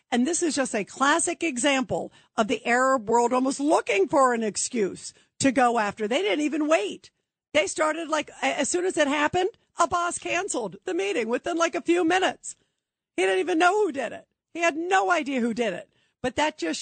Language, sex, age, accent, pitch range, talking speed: English, female, 50-69, American, 220-290 Hz, 205 wpm